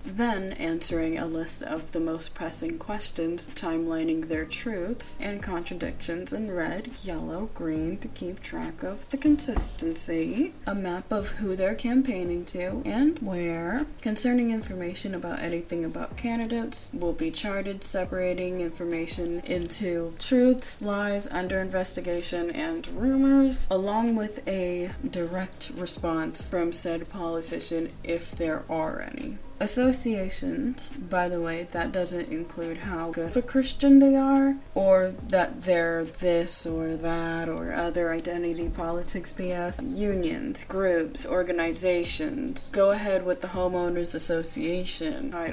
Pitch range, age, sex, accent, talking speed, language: 170-245 Hz, 20-39, female, American, 130 wpm, English